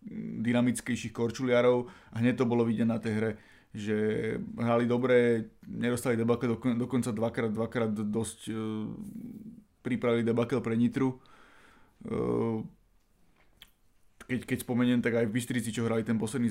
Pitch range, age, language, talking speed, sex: 110-120 Hz, 20-39, Slovak, 130 wpm, male